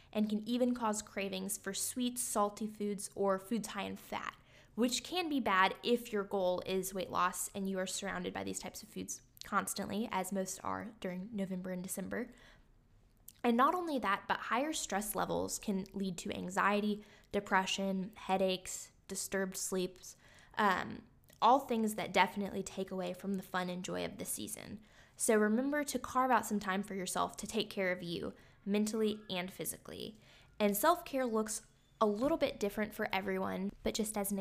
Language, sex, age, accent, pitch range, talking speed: English, female, 10-29, American, 190-225 Hz, 180 wpm